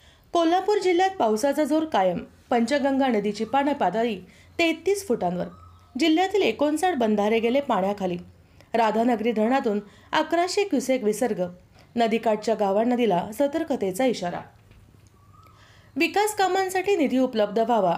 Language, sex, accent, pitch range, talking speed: Marathi, female, native, 205-285 Hz, 95 wpm